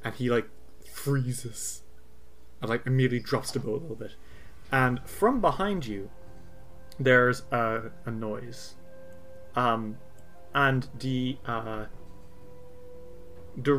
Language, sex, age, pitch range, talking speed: English, male, 30-49, 85-120 Hz, 115 wpm